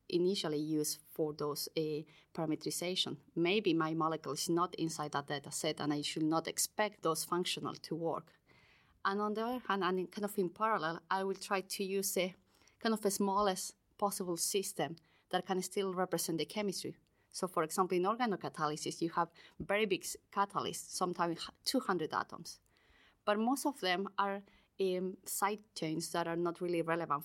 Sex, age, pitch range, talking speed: female, 30-49, 160-195 Hz, 170 wpm